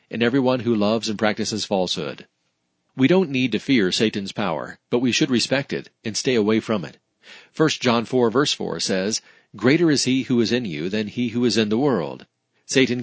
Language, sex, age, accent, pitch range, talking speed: English, male, 40-59, American, 110-130 Hz, 205 wpm